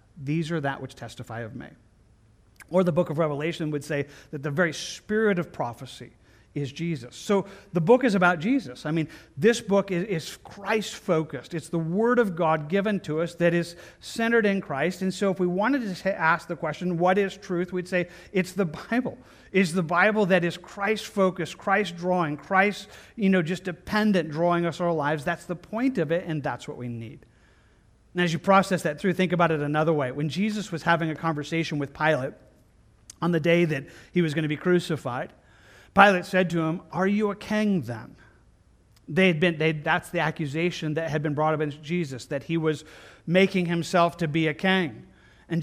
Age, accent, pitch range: 40-59, American, 155-190 Hz